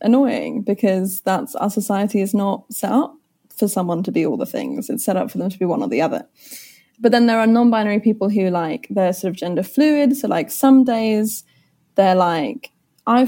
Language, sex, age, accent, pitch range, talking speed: English, female, 20-39, British, 190-250 Hz, 210 wpm